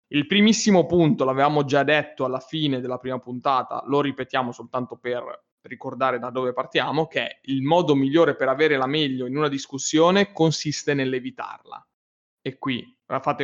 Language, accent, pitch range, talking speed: Italian, native, 130-155 Hz, 155 wpm